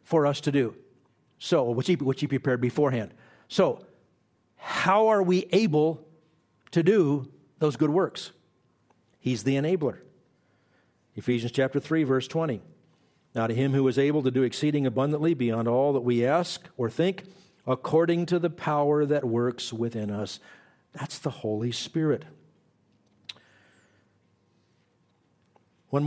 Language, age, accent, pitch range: English, 50-69, American, 120-165 Hz